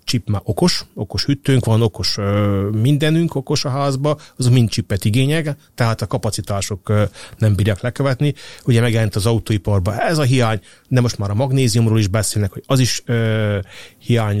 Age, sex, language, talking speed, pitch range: 30-49, male, Hungarian, 175 wpm, 105-125 Hz